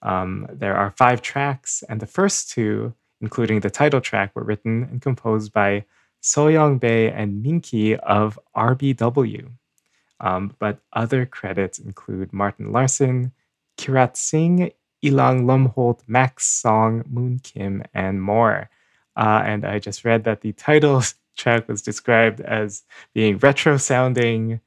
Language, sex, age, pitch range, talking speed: English, male, 20-39, 105-130 Hz, 135 wpm